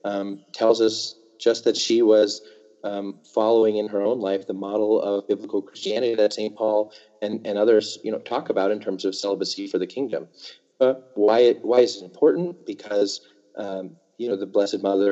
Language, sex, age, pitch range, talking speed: English, male, 30-49, 95-115 Hz, 195 wpm